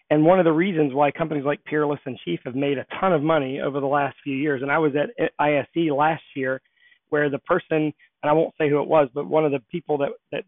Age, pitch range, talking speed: 40-59, 145-165 Hz, 265 wpm